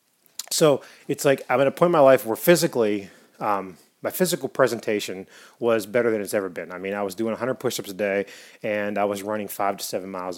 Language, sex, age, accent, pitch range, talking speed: English, male, 30-49, American, 105-135 Hz, 225 wpm